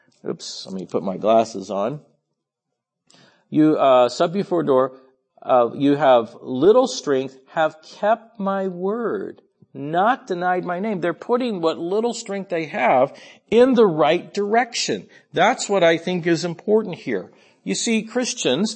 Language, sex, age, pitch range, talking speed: English, male, 50-69, 170-235 Hz, 145 wpm